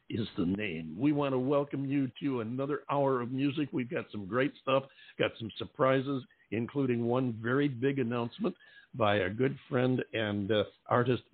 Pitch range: 115-140 Hz